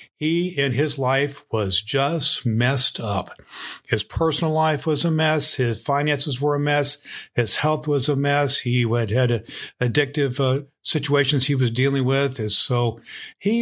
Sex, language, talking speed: male, English, 165 wpm